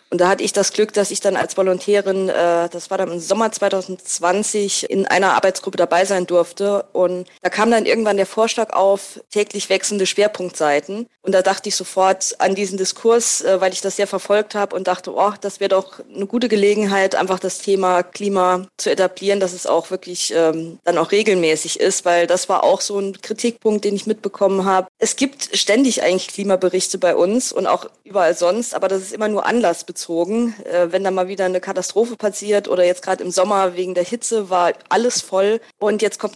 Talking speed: 200 wpm